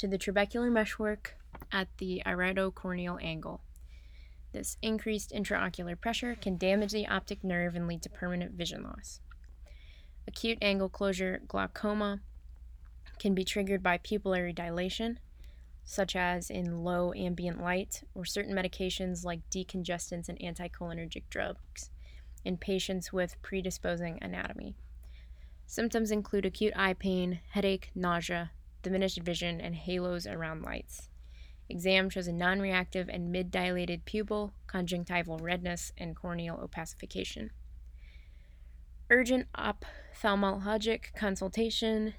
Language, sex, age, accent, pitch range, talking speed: English, female, 20-39, American, 165-195 Hz, 115 wpm